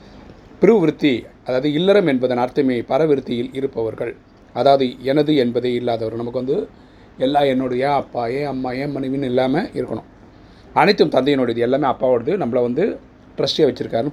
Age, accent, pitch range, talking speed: 30-49, native, 120-135 Hz, 130 wpm